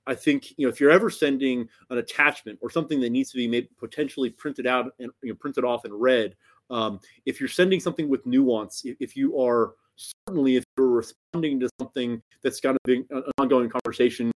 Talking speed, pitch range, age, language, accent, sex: 210 wpm, 120-145 Hz, 30-49, English, American, male